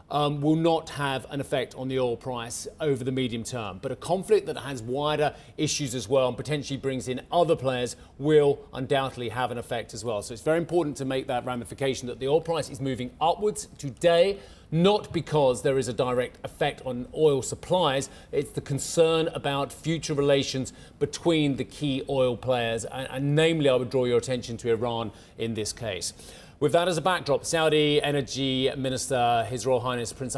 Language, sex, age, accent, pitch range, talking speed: English, male, 30-49, British, 120-145 Hz, 195 wpm